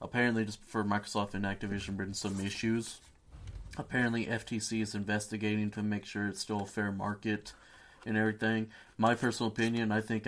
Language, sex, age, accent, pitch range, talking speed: English, male, 30-49, American, 100-110 Hz, 165 wpm